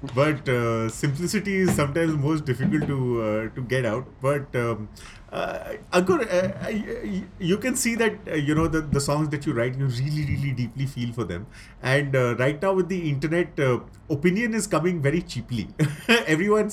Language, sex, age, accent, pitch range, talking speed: English, male, 30-49, Indian, 115-165 Hz, 185 wpm